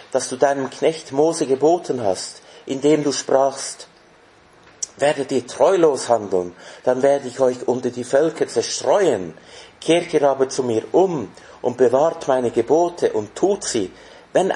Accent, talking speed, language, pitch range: Austrian, 150 wpm, English, 125-165 Hz